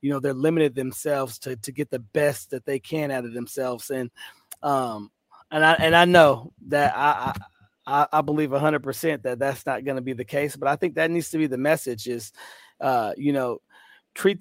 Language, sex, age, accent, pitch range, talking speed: English, male, 30-49, American, 130-155 Hz, 215 wpm